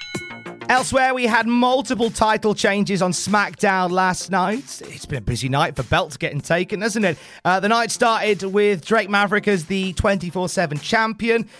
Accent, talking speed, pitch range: British, 165 wpm, 145-205 Hz